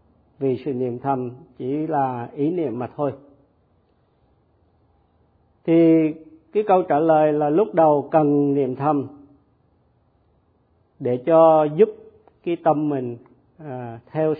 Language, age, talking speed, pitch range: Vietnamese, 50-69, 115 wpm, 130-160 Hz